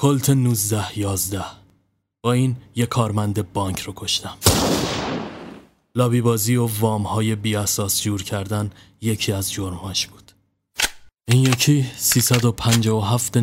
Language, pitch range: Persian, 95-115 Hz